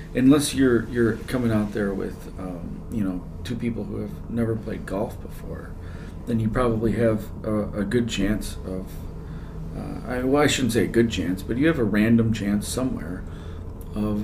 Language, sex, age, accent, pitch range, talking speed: English, male, 40-59, American, 95-115 Hz, 185 wpm